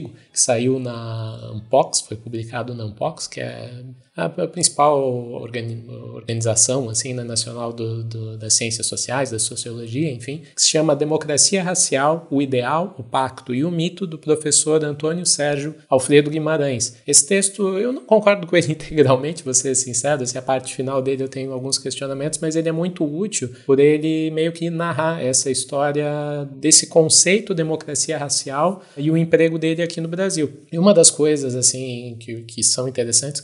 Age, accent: 20-39, Brazilian